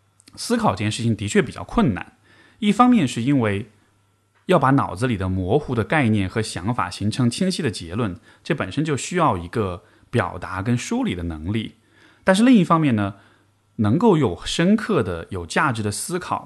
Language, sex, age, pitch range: Chinese, male, 20-39, 105-150 Hz